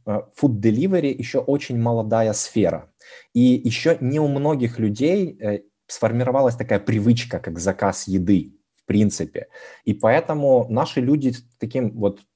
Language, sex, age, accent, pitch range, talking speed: Russian, male, 20-39, native, 105-125 Hz, 130 wpm